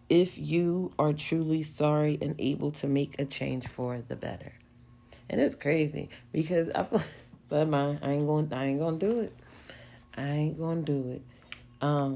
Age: 40-59